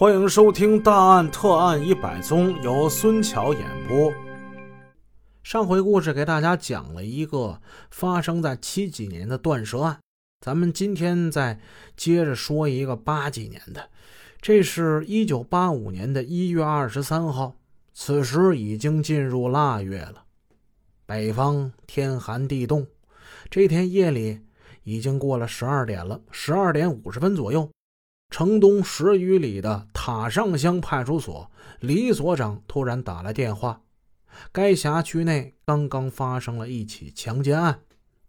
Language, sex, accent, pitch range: Chinese, male, native, 110-170 Hz